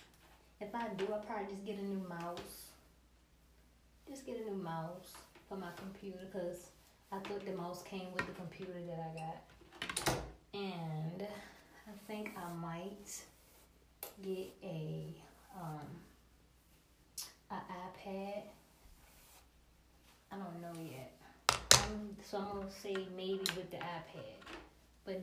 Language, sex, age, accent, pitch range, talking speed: English, female, 20-39, American, 160-200 Hz, 130 wpm